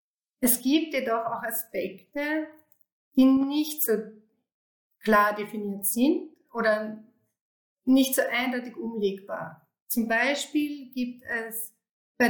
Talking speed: 100 wpm